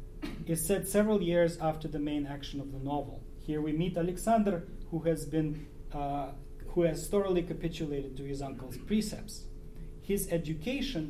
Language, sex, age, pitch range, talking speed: English, male, 40-59, 140-170 Hz, 155 wpm